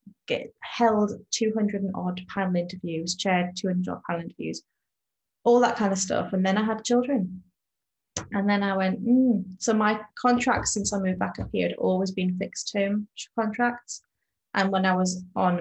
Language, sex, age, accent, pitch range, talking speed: English, female, 30-49, British, 180-220 Hz, 175 wpm